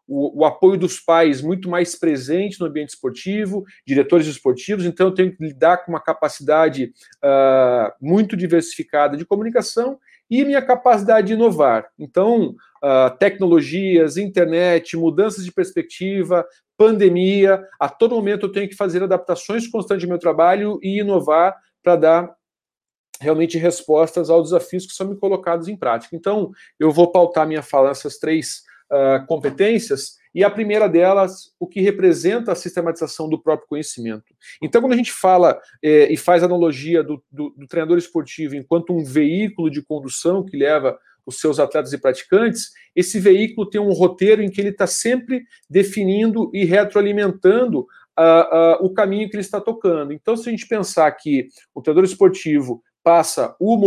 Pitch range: 155-200 Hz